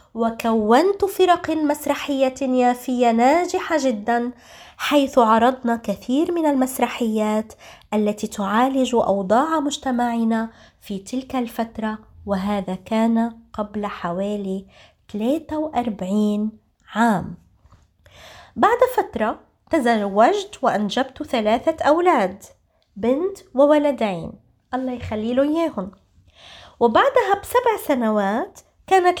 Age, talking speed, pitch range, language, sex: 20-39, 80 wpm, 215-285 Hz, Arabic, female